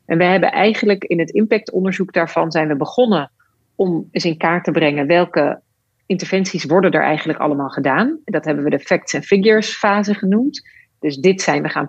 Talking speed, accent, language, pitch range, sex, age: 190 wpm, Dutch, Dutch, 160-200 Hz, female, 40-59